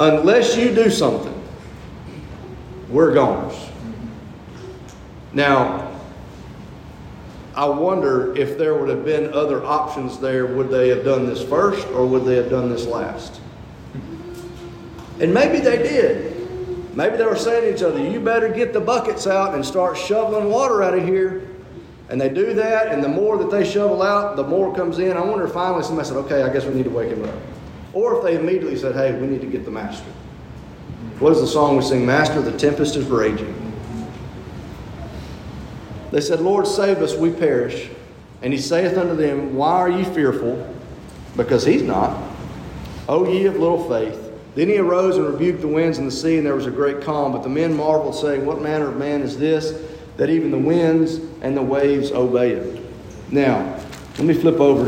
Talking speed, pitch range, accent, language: 190 wpm, 130-190 Hz, American, English